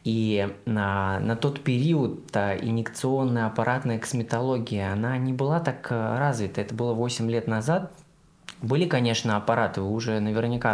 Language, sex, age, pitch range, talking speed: Russian, male, 20-39, 110-145 Hz, 135 wpm